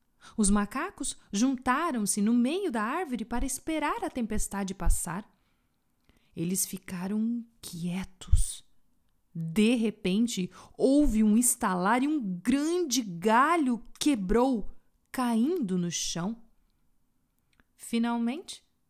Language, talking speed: Portuguese, 90 wpm